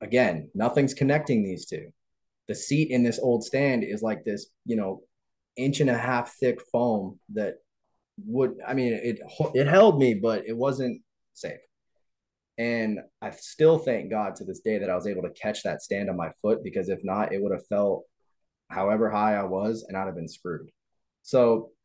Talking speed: 185 wpm